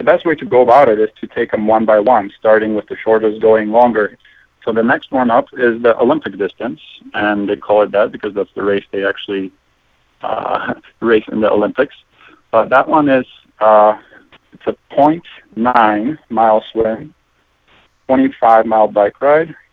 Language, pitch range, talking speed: English, 110-125 Hz, 175 wpm